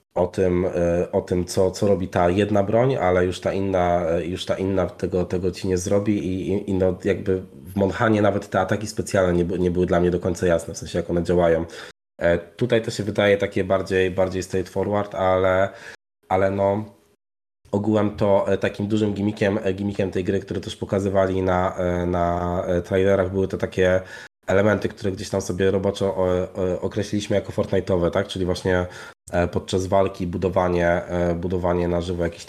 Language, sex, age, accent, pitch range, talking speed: Polish, male, 20-39, native, 90-100 Hz, 170 wpm